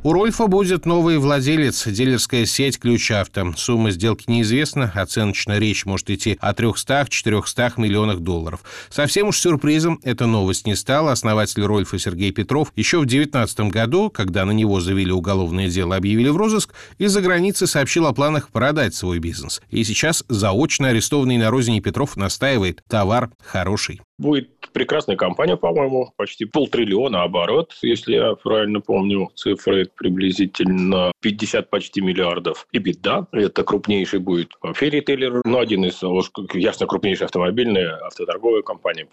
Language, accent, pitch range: Russian, native, 100-140 Hz